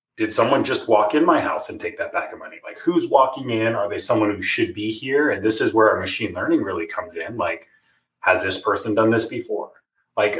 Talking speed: 240 wpm